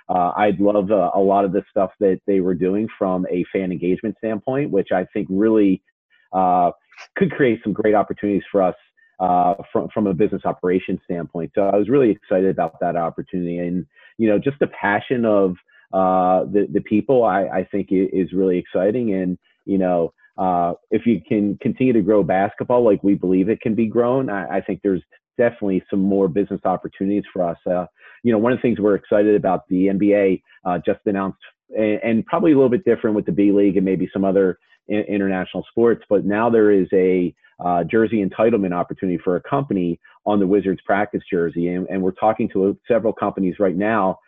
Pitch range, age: 95-105 Hz, 30-49